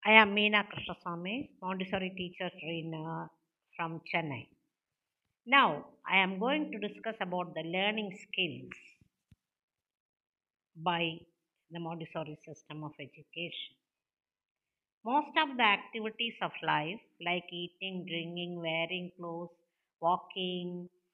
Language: English